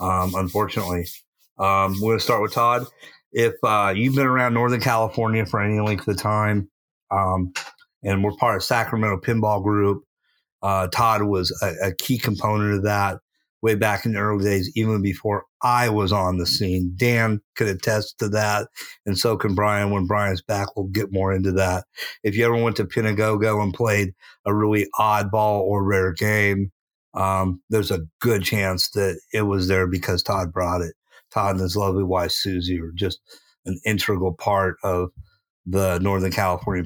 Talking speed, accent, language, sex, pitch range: 180 wpm, American, English, male, 95-110 Hz